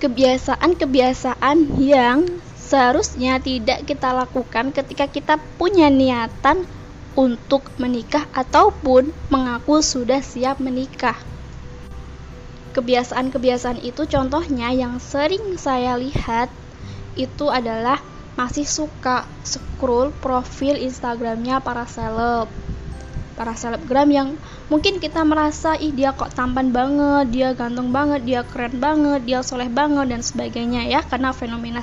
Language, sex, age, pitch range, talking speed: Indonesian, female, 10-29, 245-285 Hz, 110 wpm